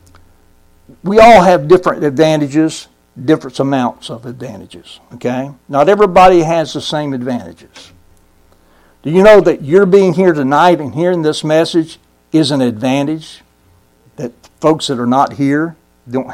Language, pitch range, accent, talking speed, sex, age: English, 130-190 Hz, American, 140 wpm, male, 60-79